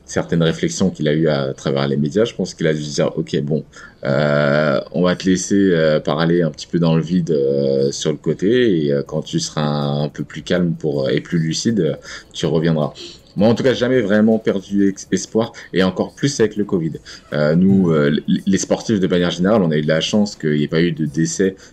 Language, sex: French, male